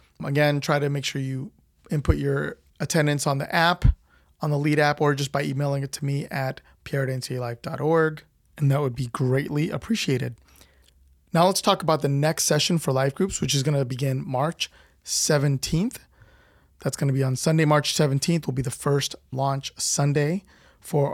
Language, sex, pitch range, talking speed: English, male, 130-155 Hz, 180 wpm